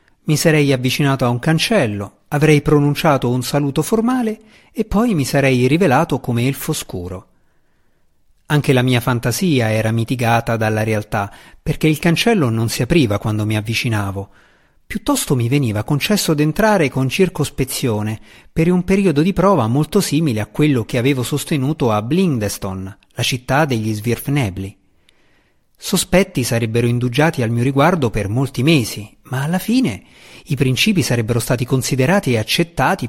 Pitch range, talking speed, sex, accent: 115-155 Hz, 145 wpm, male, native